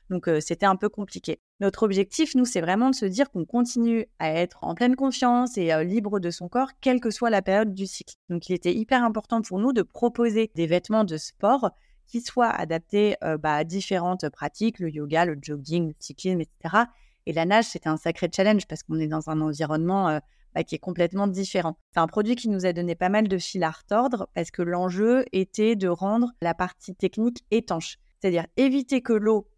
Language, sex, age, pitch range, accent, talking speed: French, female, 30-49, 165-220 Hz, French, 220 wpm